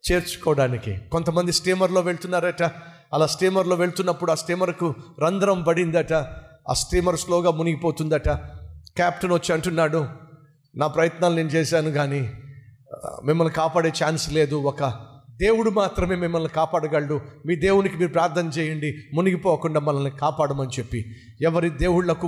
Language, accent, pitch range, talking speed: Telugu, native, 150-180 Hz, 115 wpm